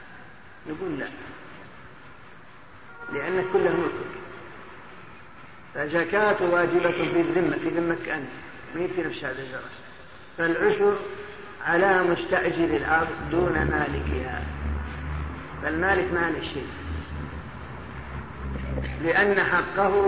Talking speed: 75 wpm